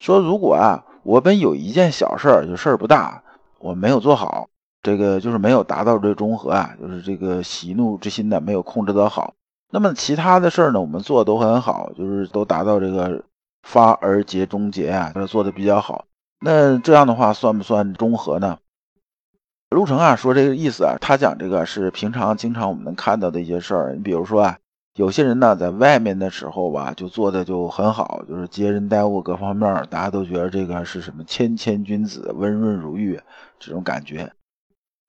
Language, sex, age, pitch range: Chinese, male, 50-69, 95-115 Hz